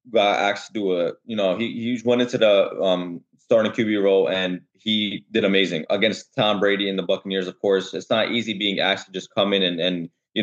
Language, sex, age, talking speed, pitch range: English, male, 20-39, 235 wpm, 110-140 Hz